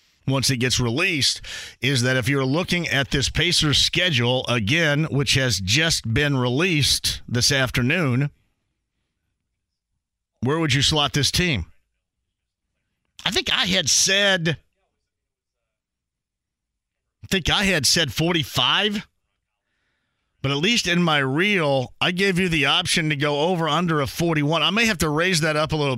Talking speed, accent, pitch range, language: 150 wpm, American, 115-175 Hz, English